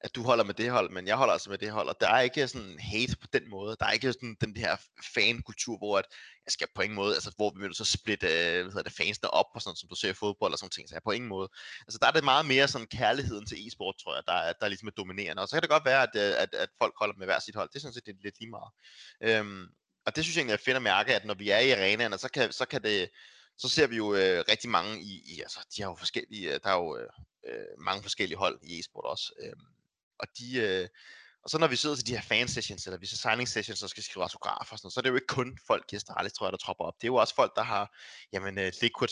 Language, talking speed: Danish, 290 wpm